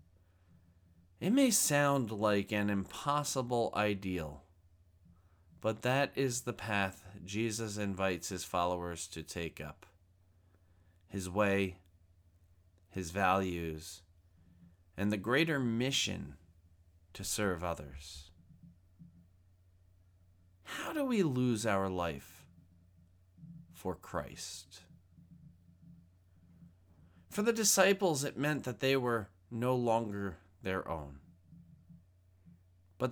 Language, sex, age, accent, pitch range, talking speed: English, male, 30-49, American, 85-125 Hz, 90 wpm